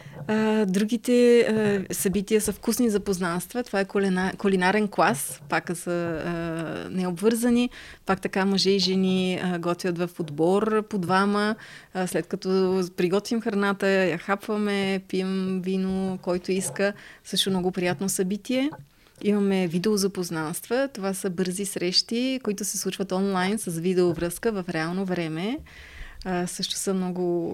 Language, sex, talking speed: Bulgarian, female, 125 wpm